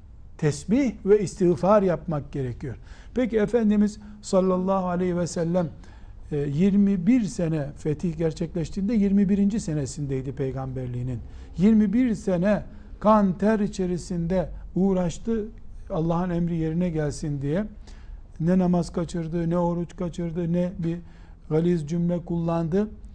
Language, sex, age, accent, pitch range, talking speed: Turkish, male, 60-79, native, 140-185 Hz, 105 wpm